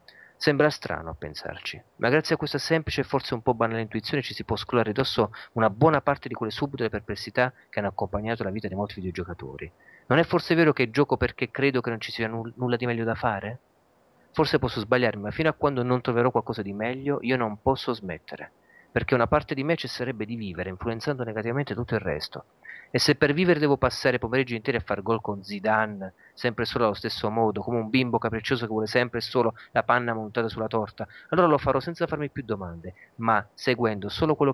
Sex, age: male, 40-59